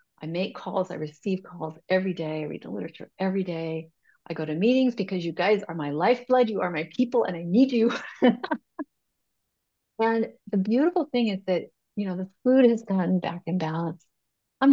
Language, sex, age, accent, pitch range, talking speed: English, female, 50-69, American, 170-210 Hz, 195 wpm